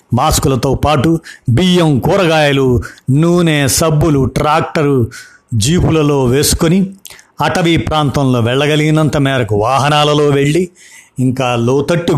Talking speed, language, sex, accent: 85 wpm, Telugu, male, native